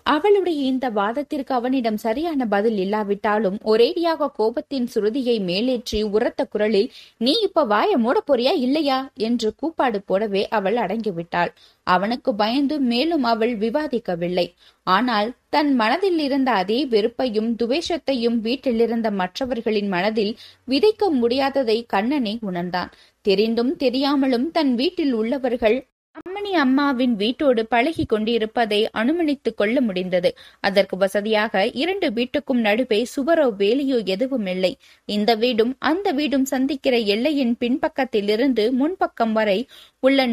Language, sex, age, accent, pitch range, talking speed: Tamil, female, 20-39, native, 215-280 Hz, 110 wpm